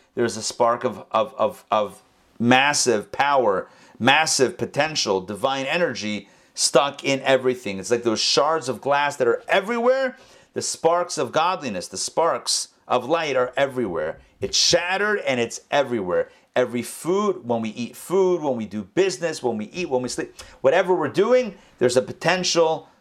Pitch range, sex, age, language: 125-180 Hz, male, 40-59, English